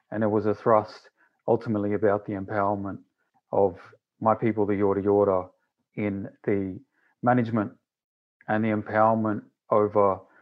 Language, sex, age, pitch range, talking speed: English, male, 30-49, 100-115 Hz, 125 wpm